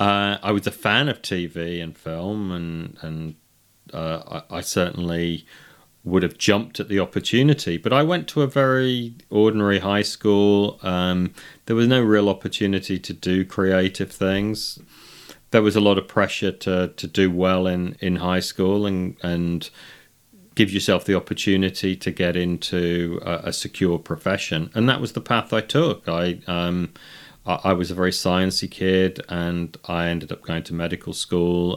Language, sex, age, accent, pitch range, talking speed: English, male, 30-49, British, 85-105 Hz, 170 wpm